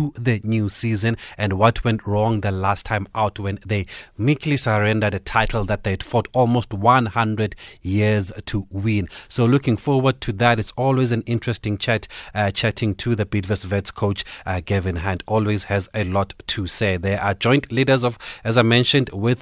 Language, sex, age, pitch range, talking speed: English, male, 30-49, 100-120 Hz, 190 wpm